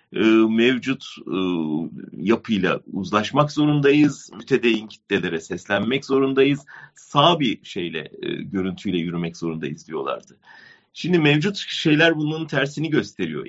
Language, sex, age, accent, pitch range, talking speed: German, male, 40-59, Turkish, 105-150 Hz, 95 wpm